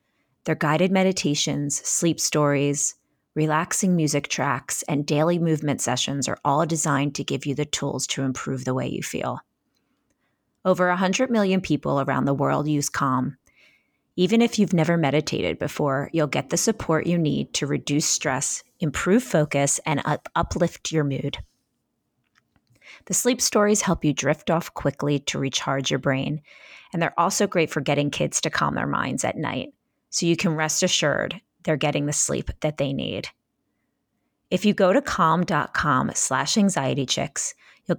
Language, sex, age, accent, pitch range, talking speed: English, female, 30-49, American, 145-185 Hz, 160 wpm